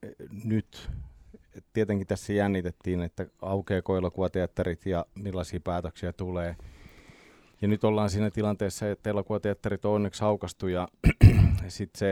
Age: 30-49